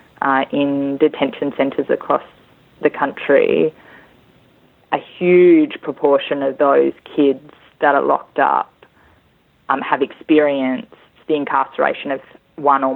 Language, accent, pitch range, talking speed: English, Australian, 140-155 Hz, 115 wpm